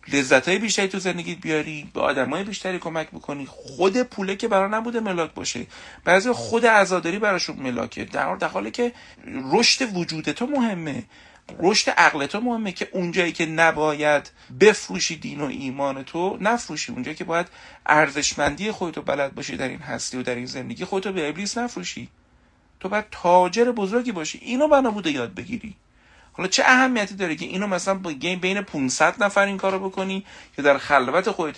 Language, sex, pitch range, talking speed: Persian, male, 140-195 Hz, 170 wpm